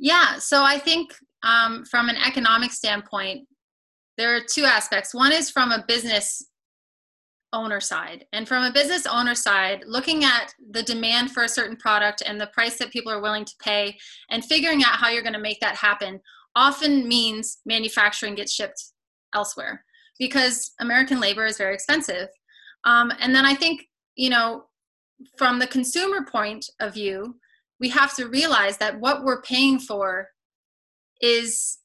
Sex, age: female, 20-39